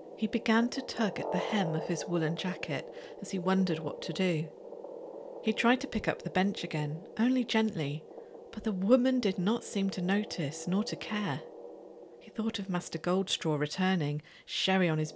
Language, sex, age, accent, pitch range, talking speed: English, female, 40-59, British, 155-220 Hz, 185 wpm